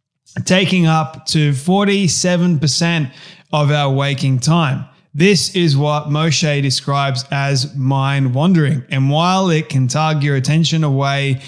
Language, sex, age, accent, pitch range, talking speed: English, male, 20-39, Australian, 140-160 Hz, 125 wpm